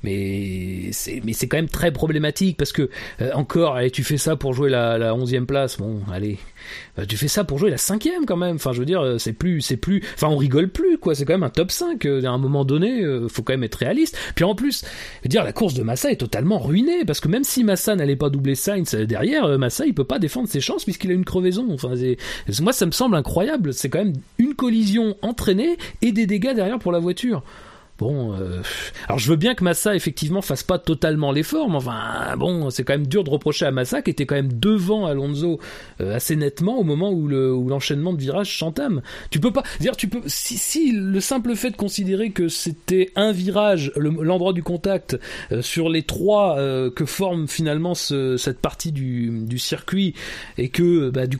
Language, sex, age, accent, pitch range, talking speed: French, male, 40-59, French, 130-195 Hz, 230 wpm